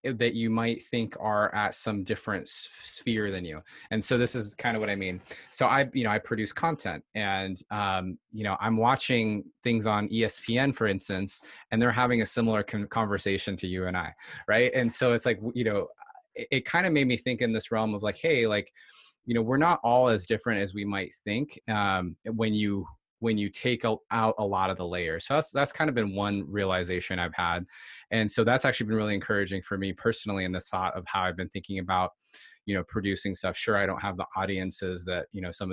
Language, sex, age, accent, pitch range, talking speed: English, male, 20-39, American, 95-115 Hz, 225 wpm